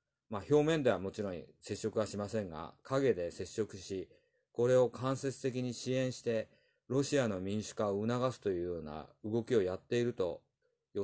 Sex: male